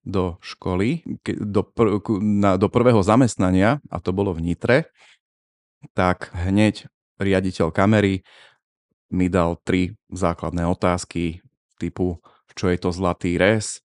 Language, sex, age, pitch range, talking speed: Slovak, male, 30-49, 90-115 Hz, 115 wpm